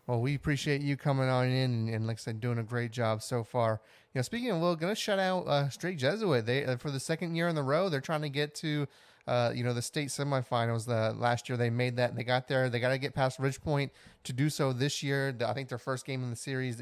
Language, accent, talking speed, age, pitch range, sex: English, American, 285 wpm, 30-49, 120-140 Hz, male